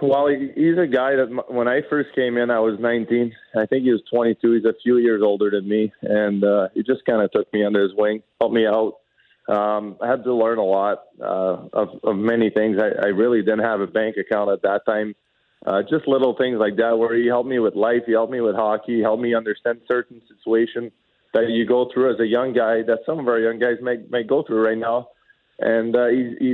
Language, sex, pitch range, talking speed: English, male, 110-125 Hz, 240 wpm